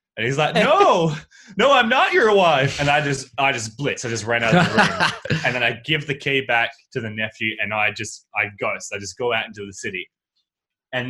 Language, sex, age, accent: English, male, 20-39, Australian